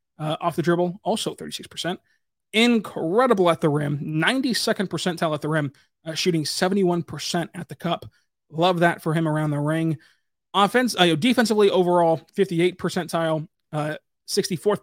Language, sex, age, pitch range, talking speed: English, male, 20-39, 155-185 Hz, 140 wpm